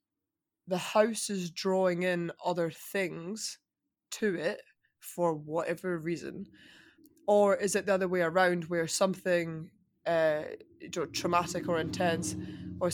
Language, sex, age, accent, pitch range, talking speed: English, female, 20-39, British, 165-200 Hz, 120 wpm